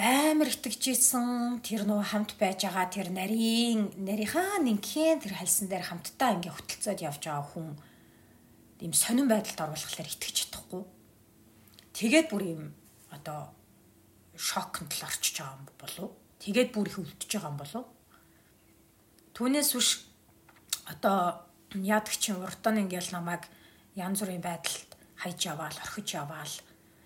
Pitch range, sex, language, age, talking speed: 160-210 Hz, female, English, 40-59, 50 wpm